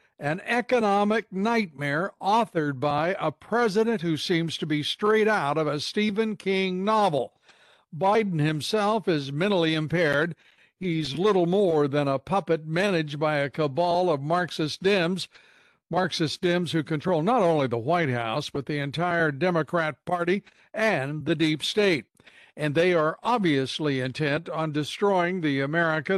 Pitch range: 150-195 Hz